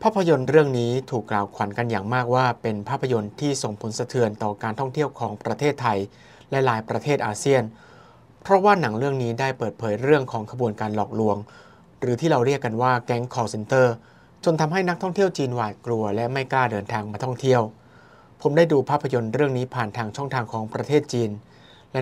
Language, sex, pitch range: Thai, male, 115-135 Hz